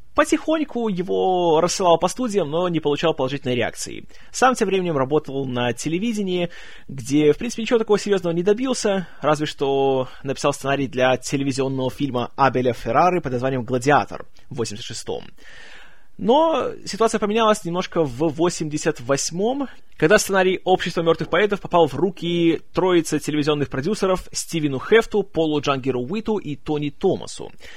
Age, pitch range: 20-39, 135-200 Hz